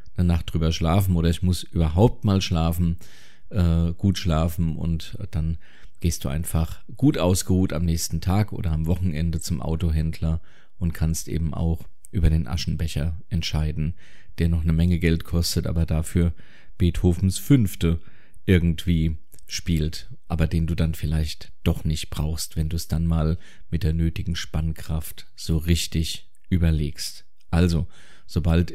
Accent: German